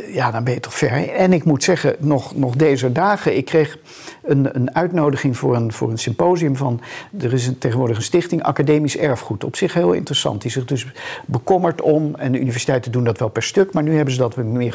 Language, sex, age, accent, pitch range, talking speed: Dutch, male, 50-69, Dutch, 125-160 Hz, 235 wpm